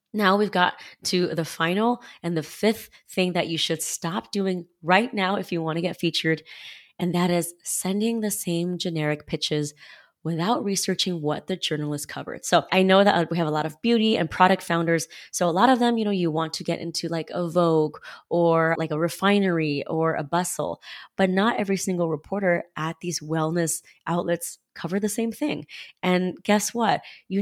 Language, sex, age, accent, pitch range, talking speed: English, female, 20-39, American, 160-200 Hz, 195 wpm